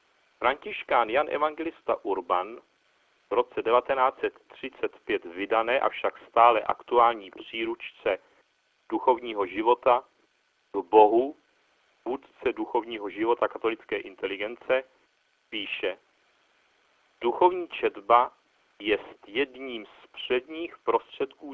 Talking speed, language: 85 wpm, Czech